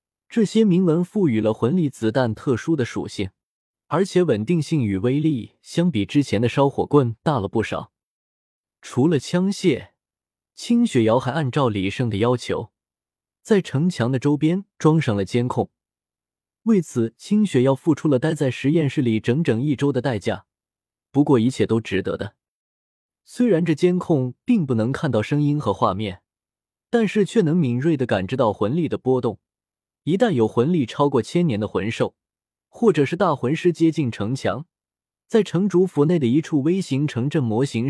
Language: Chinese